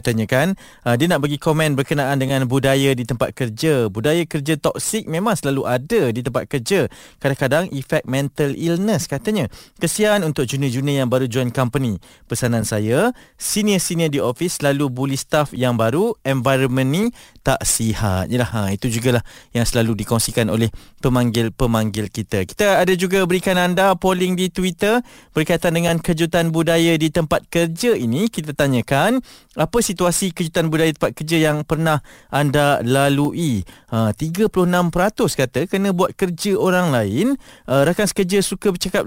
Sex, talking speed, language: male, 145 wpm, Malay